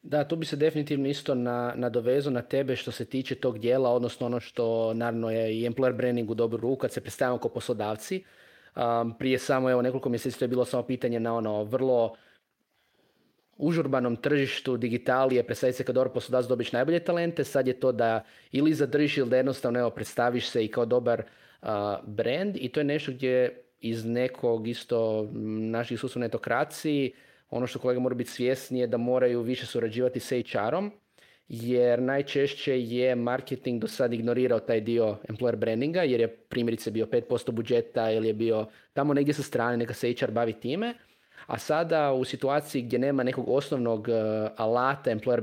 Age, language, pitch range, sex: 20-39, Croatian, 115-135 Hz, male